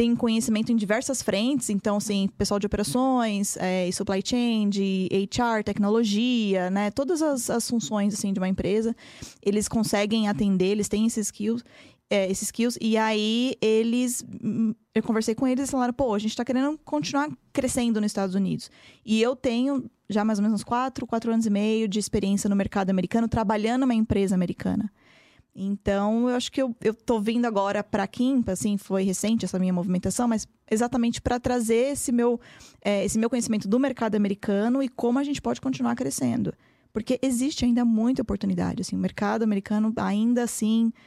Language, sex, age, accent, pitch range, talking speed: Portuguese, female, 20-39, Brazilian, 205-240 Hz, 185 wpm